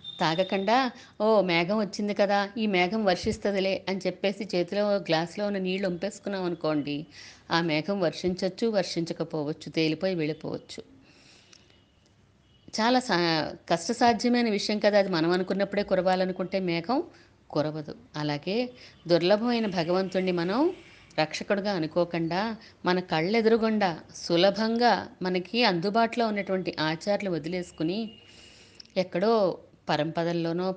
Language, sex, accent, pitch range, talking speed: Telugu, female, native, 170-210 Hz, 95 wpm